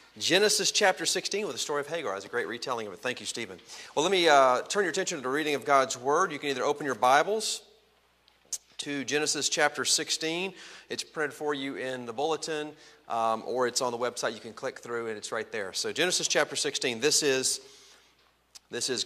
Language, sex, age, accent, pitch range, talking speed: English, male, 40-59, American, 115-150 Hz, 215 wpm